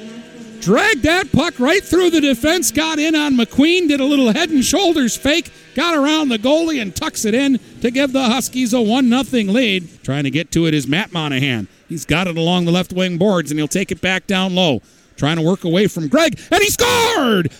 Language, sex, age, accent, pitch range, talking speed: English, male, 50-69, American, 190-280 Hz, 225 wpm